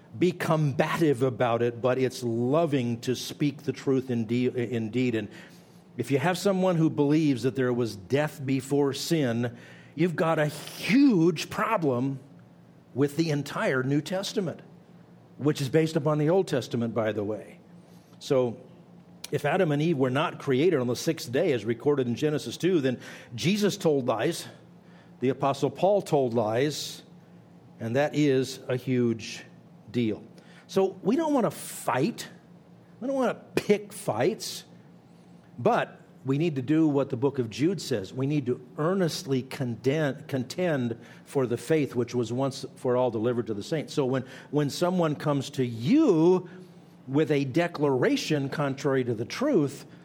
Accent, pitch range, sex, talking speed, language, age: American, 125-170 Hz, male, 160 wpm, English, 50-69